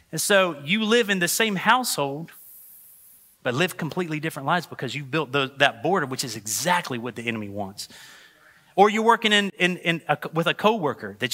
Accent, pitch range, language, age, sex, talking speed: American, 150-195 Hz, English, 30-49, male, 195 wpm